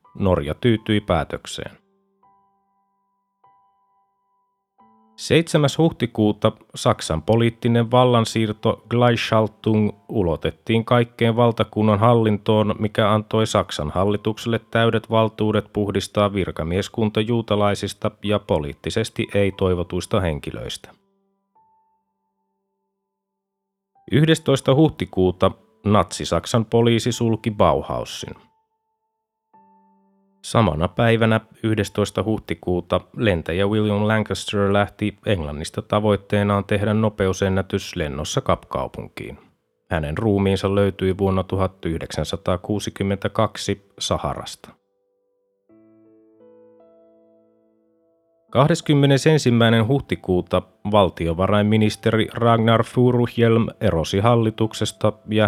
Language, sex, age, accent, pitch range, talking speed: Finnish, male, 30-49, native, 100-120 Hz, 65 wpm